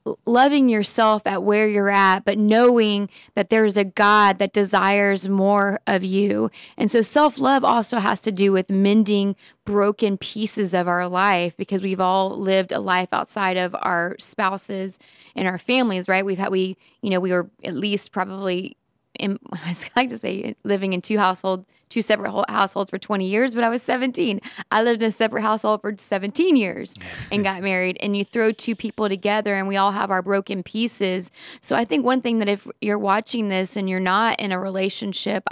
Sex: female